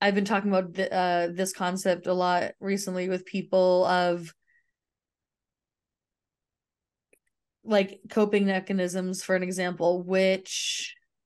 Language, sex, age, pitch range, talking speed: English, female, 20-39, 185-205 Hz, 110 wpm